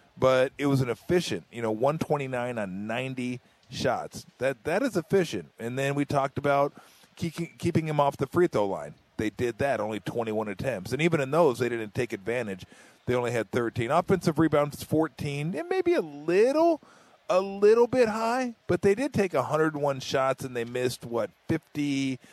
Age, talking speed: 40-59, 185 wpm